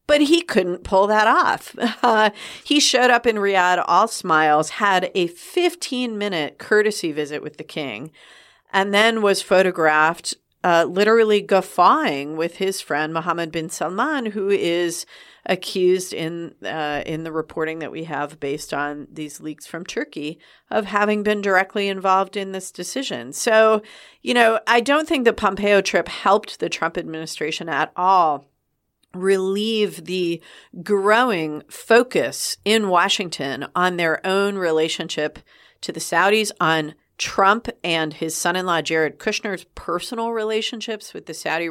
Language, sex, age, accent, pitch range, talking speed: English, female, 40-59, American, 160-210 Hz, 145 wpm